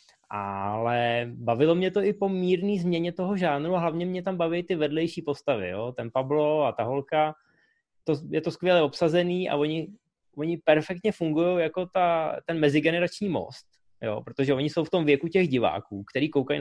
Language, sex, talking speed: Czech, male, 175 wpm